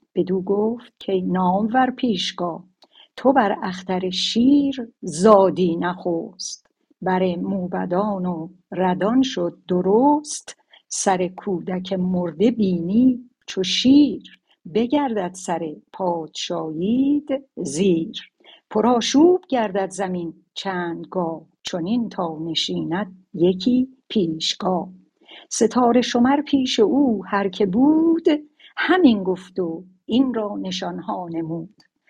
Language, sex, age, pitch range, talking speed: Persian, female, 60-79, 180-235 Hz, 95 wpm